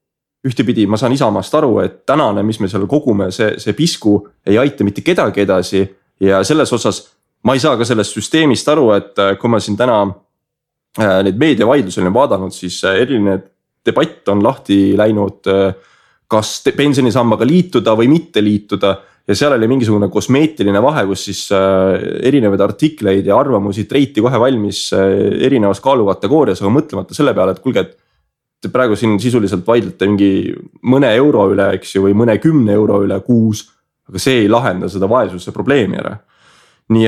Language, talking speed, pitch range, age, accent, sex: English, 155 wpm, 95-120 Hz, 20-39, Finnish, male